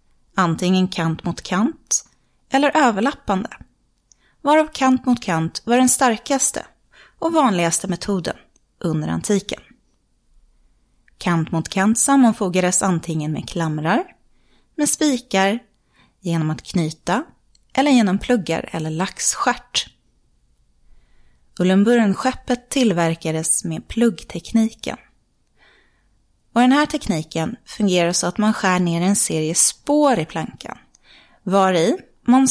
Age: 30-49